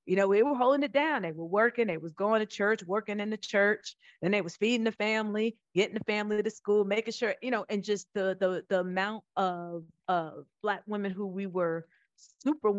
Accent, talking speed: American, 225 wpm